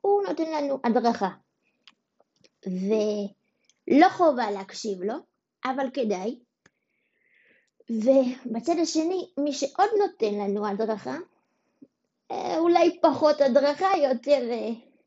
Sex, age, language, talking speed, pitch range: female, 20-39, Hebrew, 85 wpm, 230-310 Hz